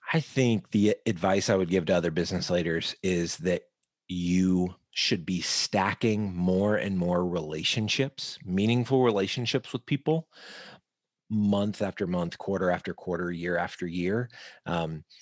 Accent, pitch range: American, 90-105 Hz